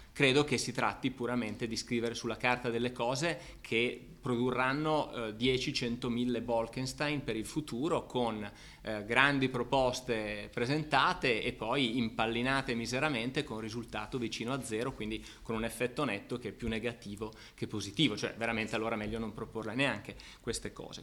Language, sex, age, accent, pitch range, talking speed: Italian, male, 30-49, native, 115-150 Hz, 150 wpm